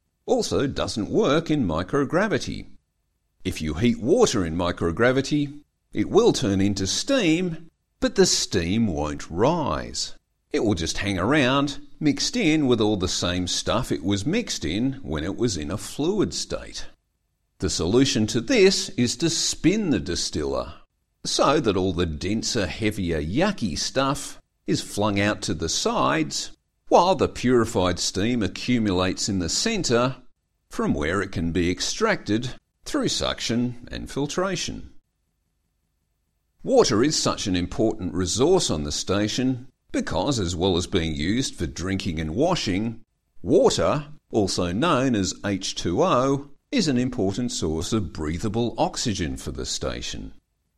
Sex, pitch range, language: male, 85-125 Hz, English